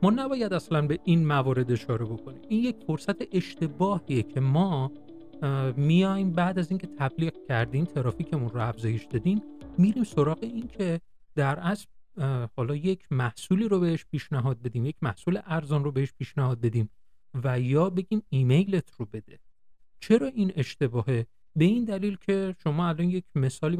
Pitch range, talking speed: 130-180 Hz, 155 wpm